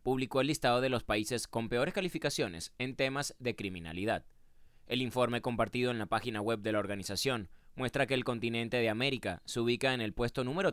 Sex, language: male, Spanish